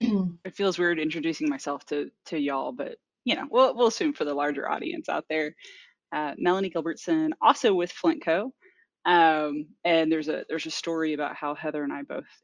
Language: English